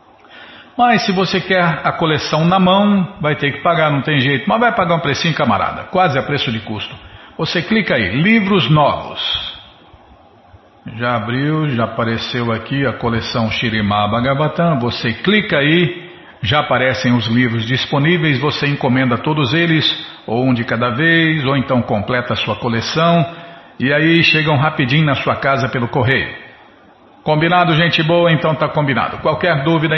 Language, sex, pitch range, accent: Portuguese, male, 125-165 Hz, Brazilian